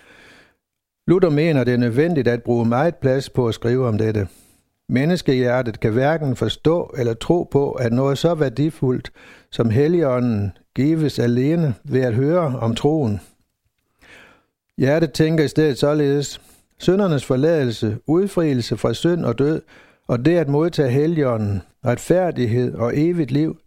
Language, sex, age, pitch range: Danish, male, 60-79, 120-155 Hz